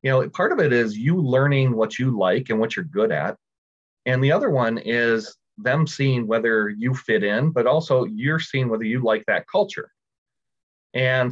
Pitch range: 110-155 Hz